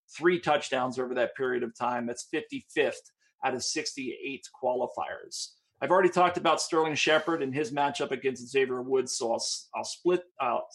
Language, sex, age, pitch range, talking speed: English, male, 40-59, 130-175 Hz, 165 wpm